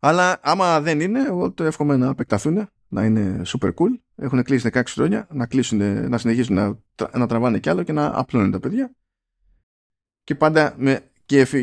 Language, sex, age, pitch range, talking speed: Greek, male, 20-39, 100-140 Hz, 180 wpm